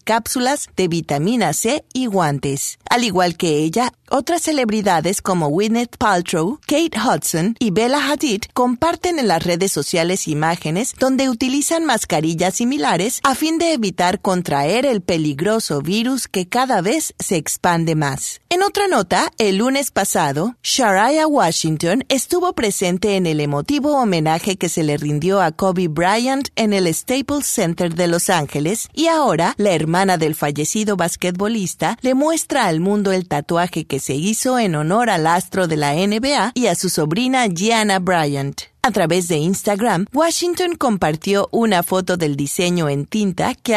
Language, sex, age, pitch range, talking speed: Spanish, female, 40-59, 170-245 Hz, 160 wpm